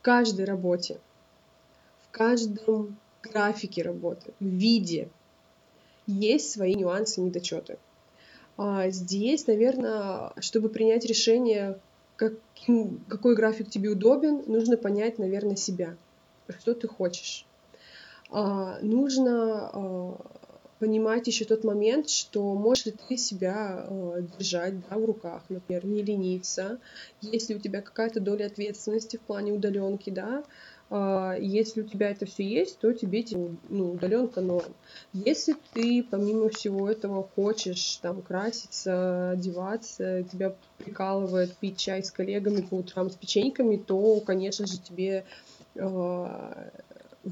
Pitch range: 190-225 Hz